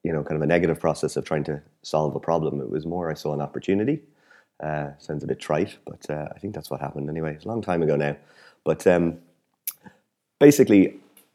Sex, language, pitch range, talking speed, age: male, English, 70-85 Hz, 220 wpm, 30-49